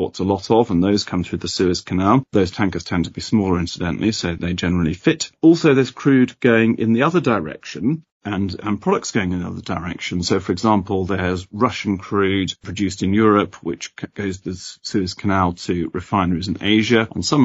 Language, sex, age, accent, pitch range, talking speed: English, male, 40-59, British, 90-110 Hz, 195 wpm